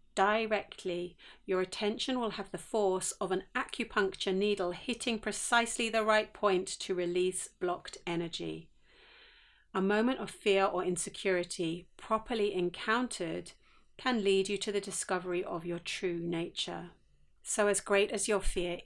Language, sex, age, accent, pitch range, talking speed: English, female, 40-59, British, 175-205 Hz, 140 wpm